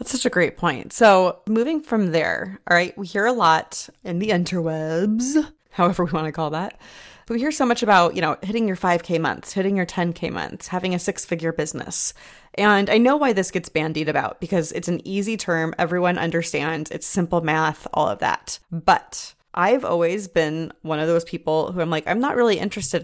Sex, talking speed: female, 210 wpm